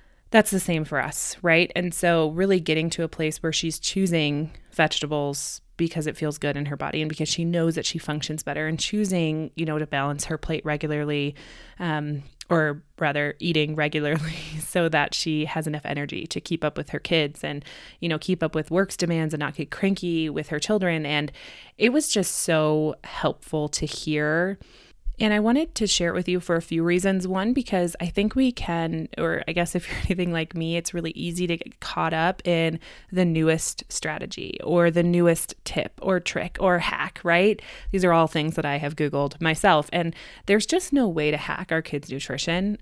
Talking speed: 205 wpm